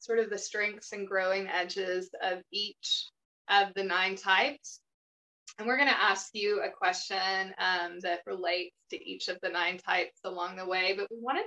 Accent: American